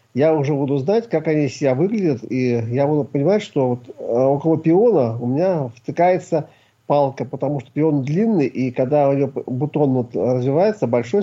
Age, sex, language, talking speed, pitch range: 40-59, male, Russian, 170 wpm, 130-170 Hz